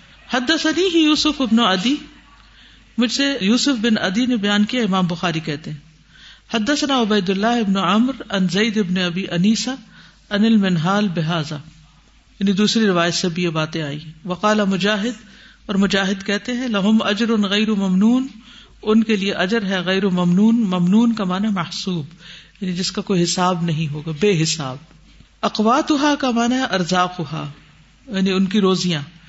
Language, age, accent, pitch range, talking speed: English, 50-69, Indian, 185-245 Hz, 140 wpm